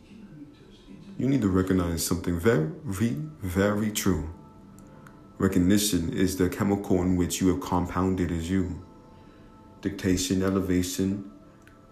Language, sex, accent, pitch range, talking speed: English, male, American, 90-100 Hz, 105 wpm